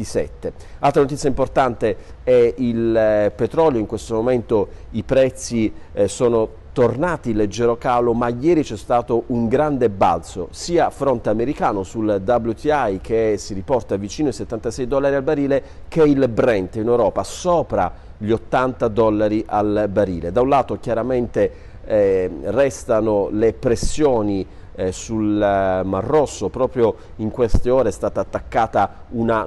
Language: Italian